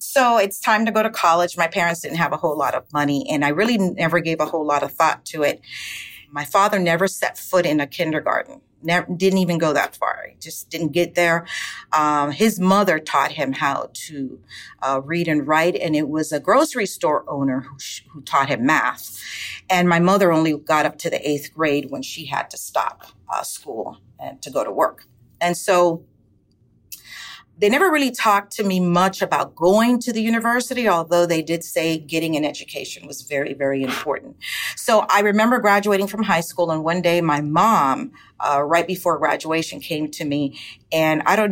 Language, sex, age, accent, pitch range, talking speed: English, female, 40-59, American, 150-200 Hz, 200 wpm